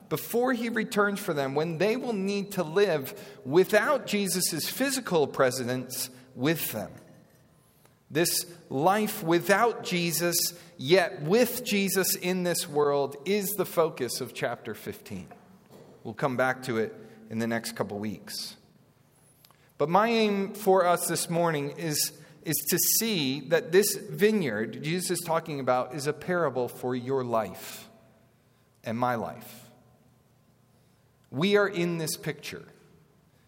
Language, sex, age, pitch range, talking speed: English, male, 40-59, 130-190 Hz, 135 wpm